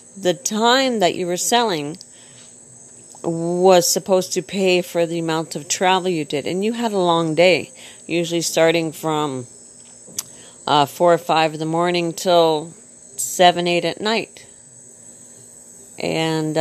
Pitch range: 165-205 Hz